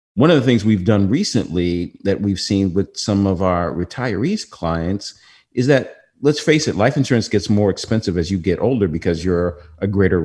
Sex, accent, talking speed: male, American, 200 wpm